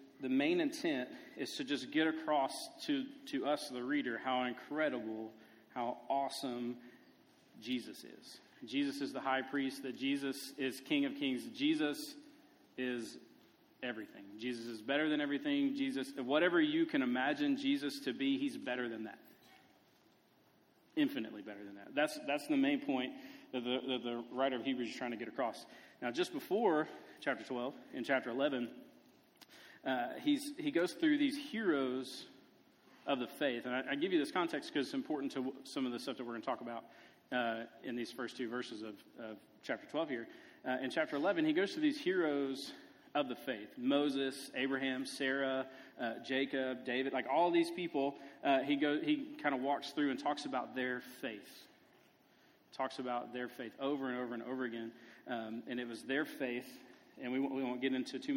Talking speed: 185 wpm